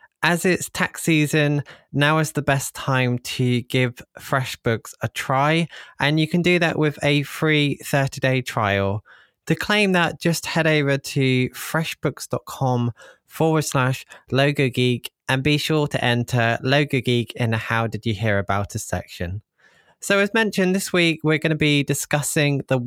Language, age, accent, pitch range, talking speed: English, 20-39, British, 115-145 Hz, 165 wpm